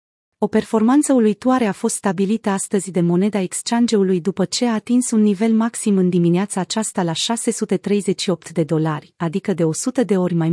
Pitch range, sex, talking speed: 175-225 Hz, female, 170 wpm